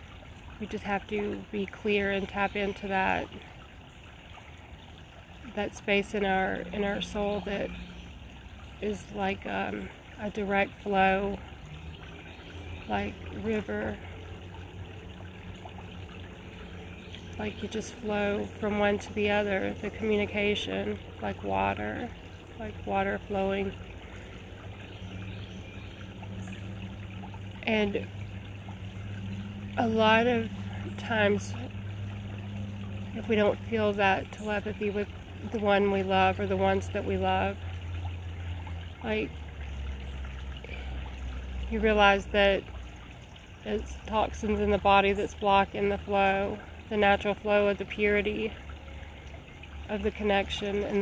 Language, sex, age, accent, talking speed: English, female, 30-49, American, 100 wpm